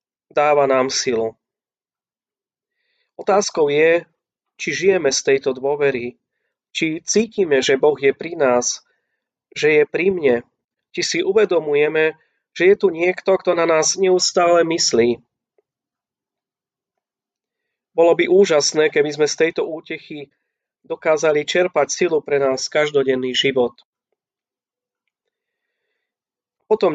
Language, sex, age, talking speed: Slovak, male, 30-49, 110 wpm